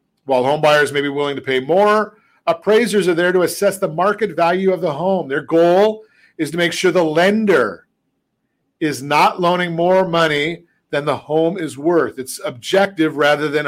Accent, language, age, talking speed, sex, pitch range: American, English, 50-69, 185 wpm, male, 160-195 Hz